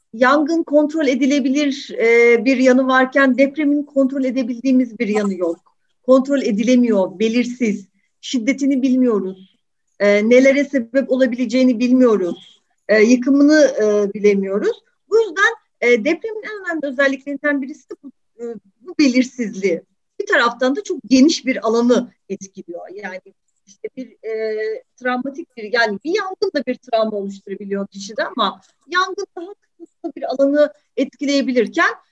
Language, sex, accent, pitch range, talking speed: Turkish, female, native, 215-300 Hz, 115 wpm